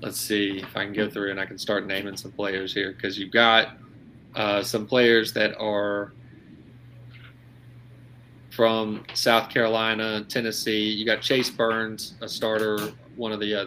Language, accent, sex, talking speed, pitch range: English, American, male, 165 wpm, 105-120 Hz